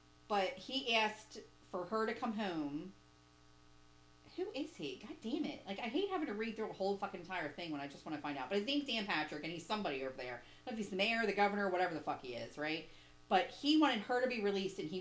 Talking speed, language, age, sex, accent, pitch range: 260 wpm, English, 40-59, female, American, 150-245 Hz